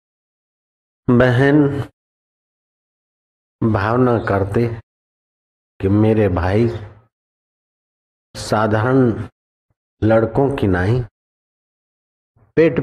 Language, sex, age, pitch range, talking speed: Hindi, male, 50-69, 95-120 Hz, 50 wpm